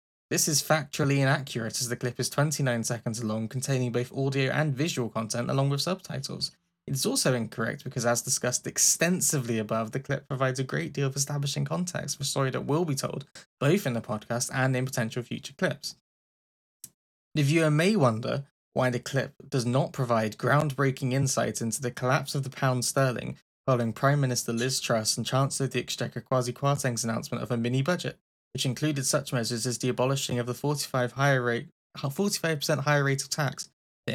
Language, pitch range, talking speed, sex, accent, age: English, 120-140 Hz, 190 wpm, male, British, 10-29